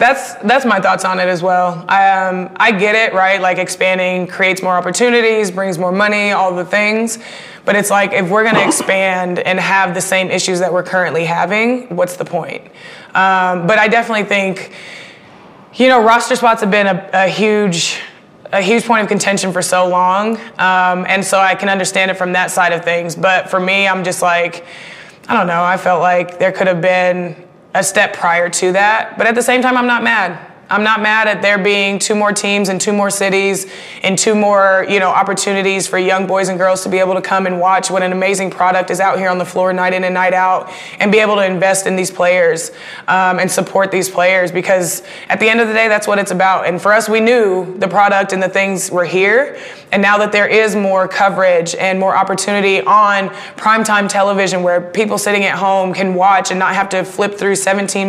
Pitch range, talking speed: 185-205 Hz, 220 wpm